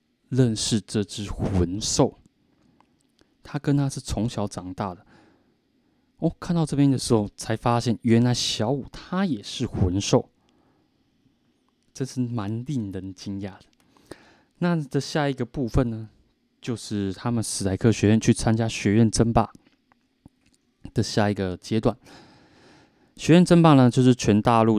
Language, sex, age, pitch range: Chinese, male, 20-39, 100-125 Hz